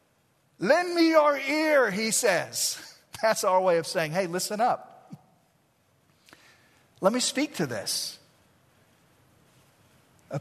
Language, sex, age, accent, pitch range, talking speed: English, male, 50-69, American, 165-240 Hz, 115 wpm